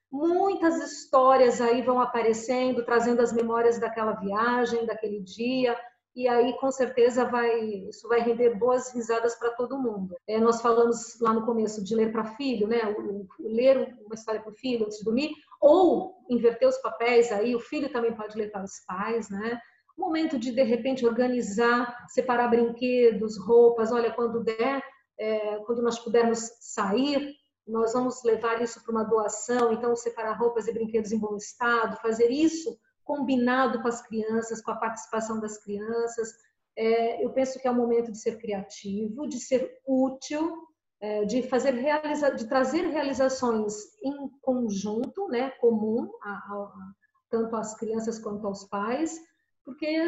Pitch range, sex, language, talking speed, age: 225-255 Hz, female, Portuguese, 160 wpm, 40-59